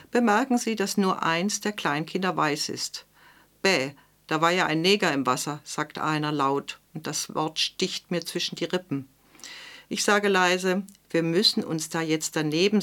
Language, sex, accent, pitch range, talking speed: German, female, German, 155-195 Hz, 175 wpm